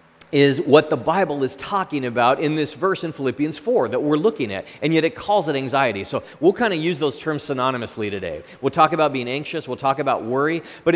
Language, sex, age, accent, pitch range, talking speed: English, male, 30-49, American, 120-160 Hz, 230 wpm